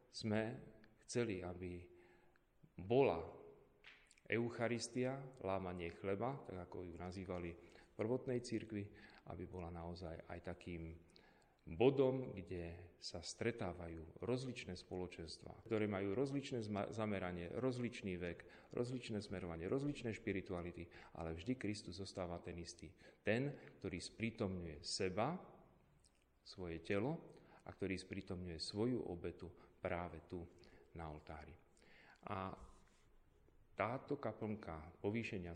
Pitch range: 90-115 Hz